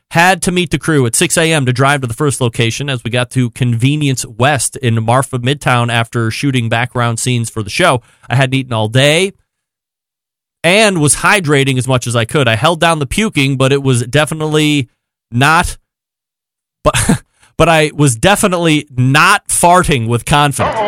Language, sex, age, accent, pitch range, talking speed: English, male, 30-49, American, 125-155 Hz, 180 wpm